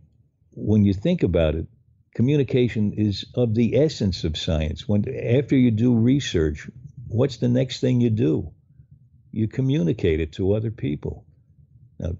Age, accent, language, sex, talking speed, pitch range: 60-79, American, English, male, 150 wpm, 90-115 Hz